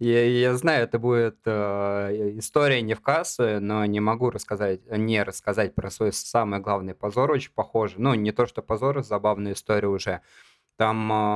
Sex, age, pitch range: male, 20-39, 100-120 Hz